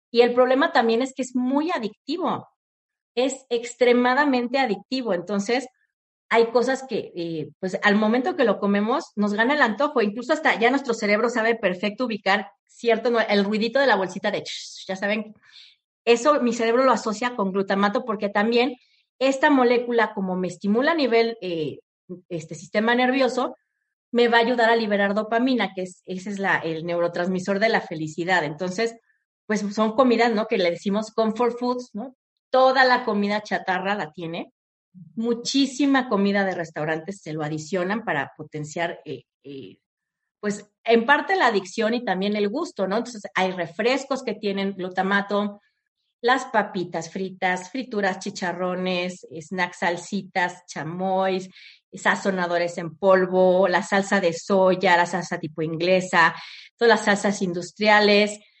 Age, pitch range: 40-59, 185-240 Hz